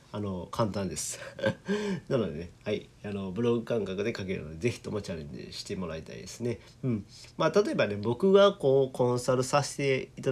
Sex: male